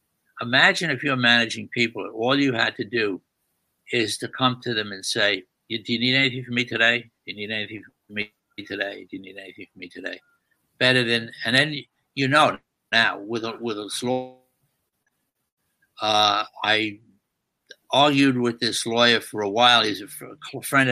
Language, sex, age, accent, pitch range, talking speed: English, male, 60-79, American, 110-130 Hz, 175 wpm